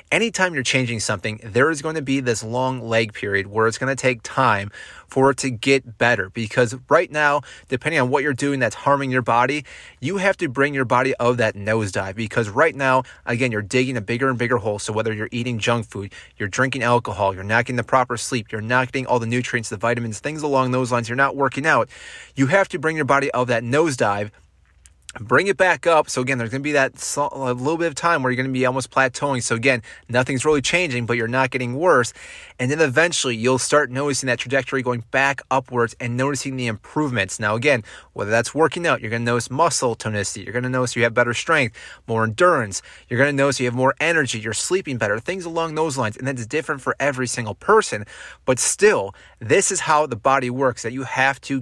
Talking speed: 235 wpm